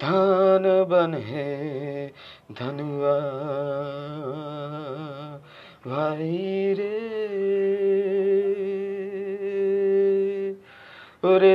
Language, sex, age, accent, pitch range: Bengali, male, 30-49, native, 145-195 Hz